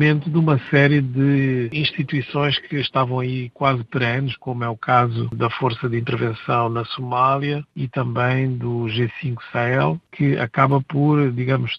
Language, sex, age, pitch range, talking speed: Portuguese, male, 50-69, 125-145 Hz, 155 wpm